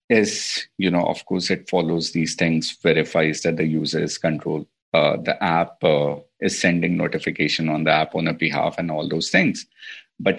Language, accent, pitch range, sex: English, Indian, 85-100 Hz, male